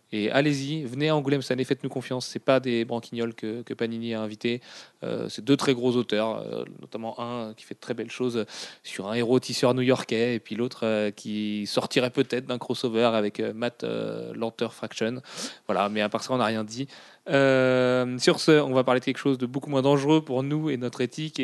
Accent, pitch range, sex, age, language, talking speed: French, 115-135 Hz, male, 30-49, French, 220 wpm